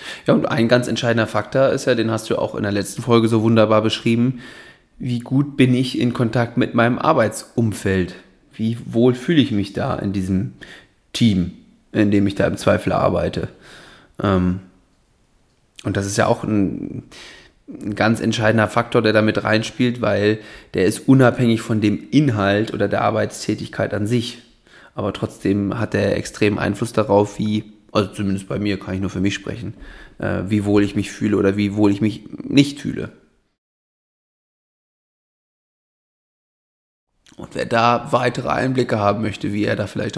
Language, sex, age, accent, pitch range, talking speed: German, male, 20-39, German, 100-120 Hz, 165 wpm